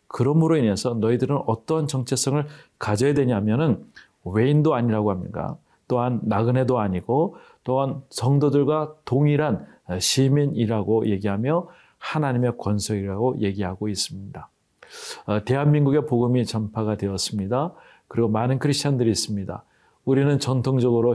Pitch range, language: 110-145 Hz, Korean